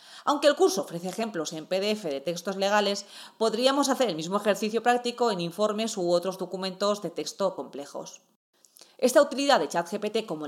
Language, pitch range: Spanish, 185-245 Hz